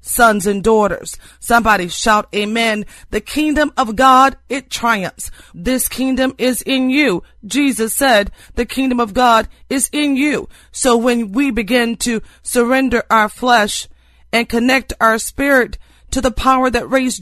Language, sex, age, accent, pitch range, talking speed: English, female, 40-59, American, 220-255 Hz, 150 wpm